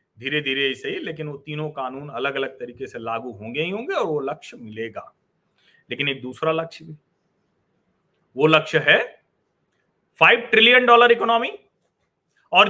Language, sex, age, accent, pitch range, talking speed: Hindi, male, 40-59, native, 160-235 Hz, 150 wpm